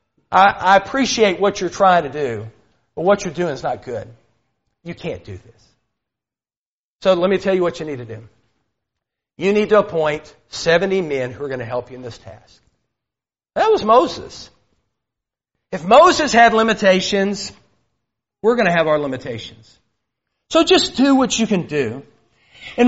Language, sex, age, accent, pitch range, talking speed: English, male, 50-69, American, 130-210 Hz, 170 wpm